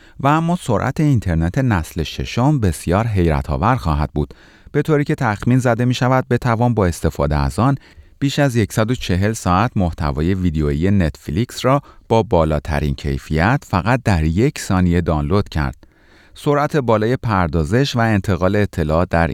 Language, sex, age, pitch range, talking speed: Persian, male, 30-49, 80-120 Hz, 145 wpm